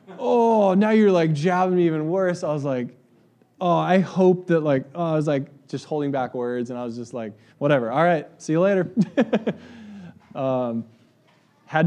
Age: 20-39